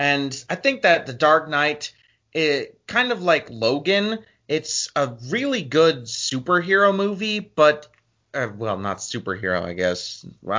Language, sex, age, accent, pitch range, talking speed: English, male, 30-49, American, 115-155 Hz, 145 wpm